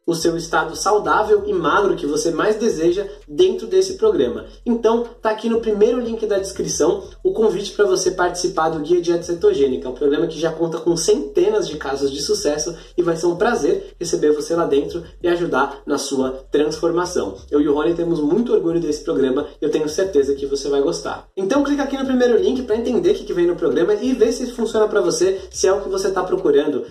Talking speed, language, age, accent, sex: 220 wpm, Portuguese, 20-39, Brazilian, male